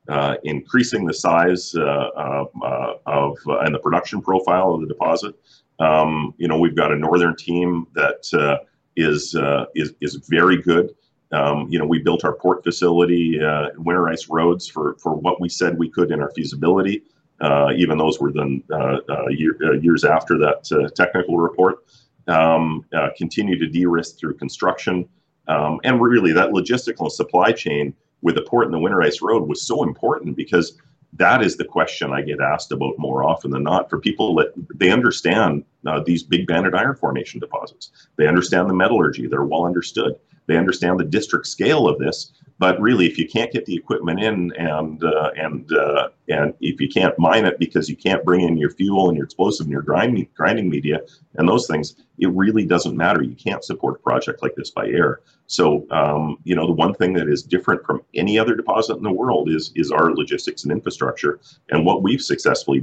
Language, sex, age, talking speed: English, male, 40-59, 200 wpm